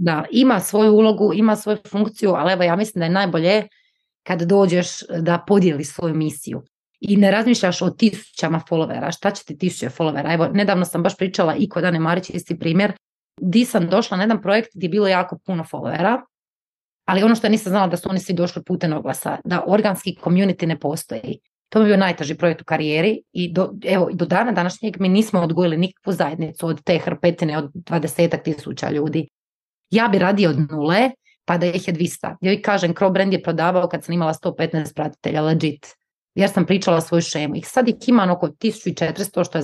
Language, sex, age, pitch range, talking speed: Croatian, female, 30-49, 165-205 Hz, 200 wpm